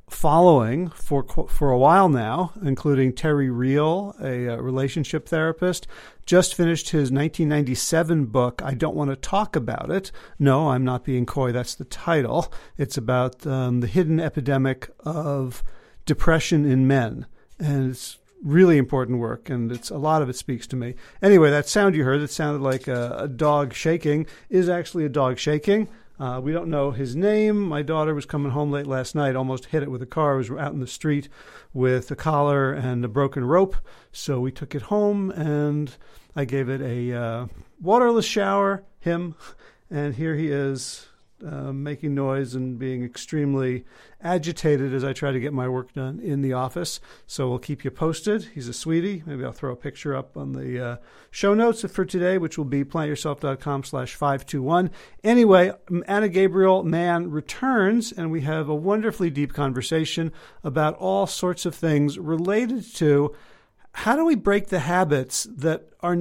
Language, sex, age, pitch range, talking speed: English, male, 50-69, 135-170 Hz, 180 wpm